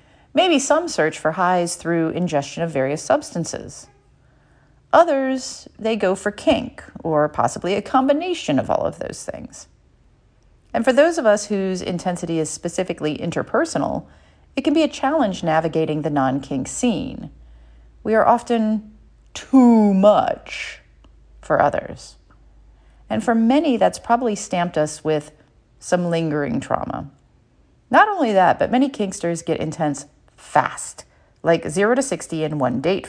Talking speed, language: 140 wpm, English